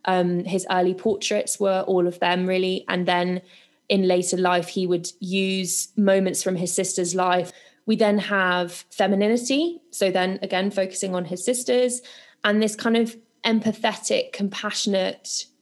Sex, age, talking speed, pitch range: female, 20-39, 150 wpm, 180-210 Hz